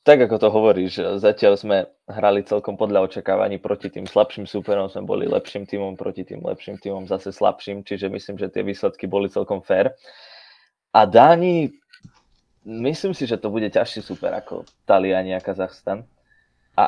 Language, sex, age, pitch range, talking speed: Slovak, male, 20-39, 95-115 Hz, 165 wpm